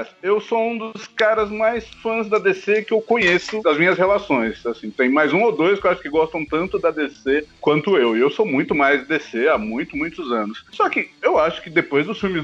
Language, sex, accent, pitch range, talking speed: Portuguese, male, Brazilian, 150-225 Hz, 235 wpm